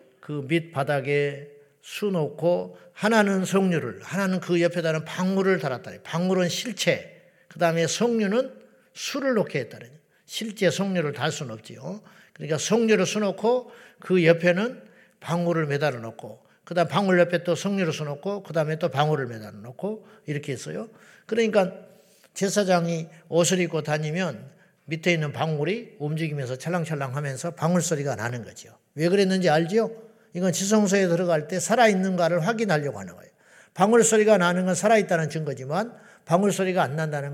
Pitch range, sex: 155-200 Hz, male